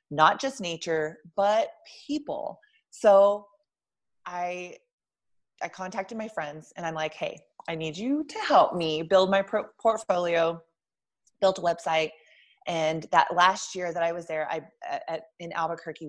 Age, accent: 30-49, American